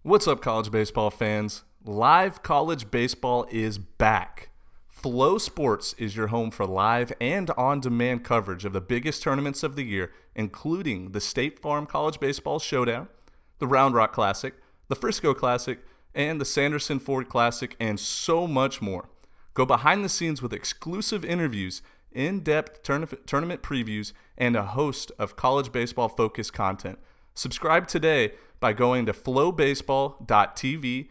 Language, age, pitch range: English, 30-49, 110-150 Hz